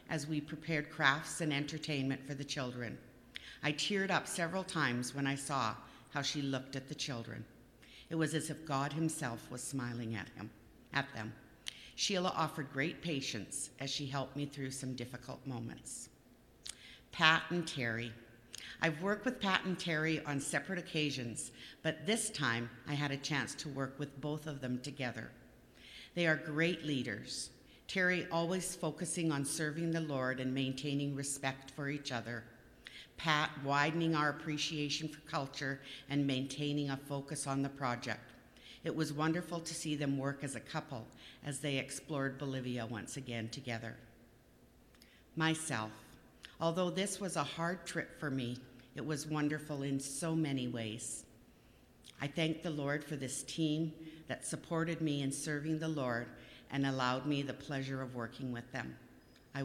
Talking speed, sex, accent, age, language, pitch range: 160 wpm, female, American, 50-69, English, 130-155 Hz